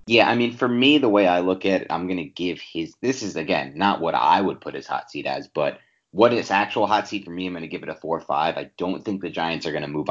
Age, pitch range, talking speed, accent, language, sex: 30-49, 80-95 Hz, 305 wpm, American, English, male